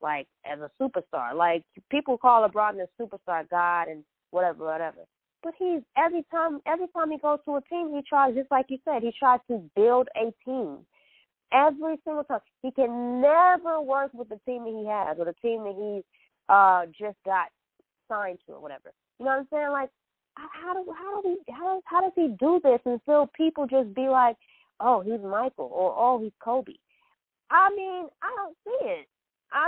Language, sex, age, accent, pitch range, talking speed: English, female, 20-39, American, 205-295 Hz, 205 wpm